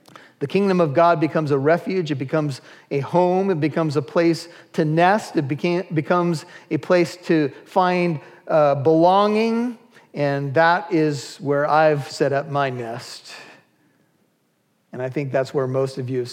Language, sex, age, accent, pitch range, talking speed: English, male, 40-59, American, 145-180 Hz, 160 wpm